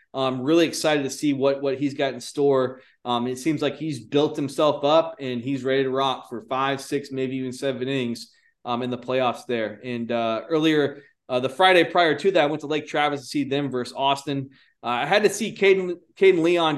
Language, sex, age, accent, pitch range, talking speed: English, male, 20-39, American, 130-170 Hz, 225 wpm